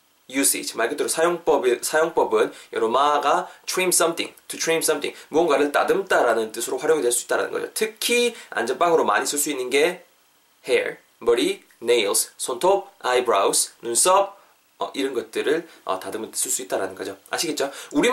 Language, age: Korean, 20-39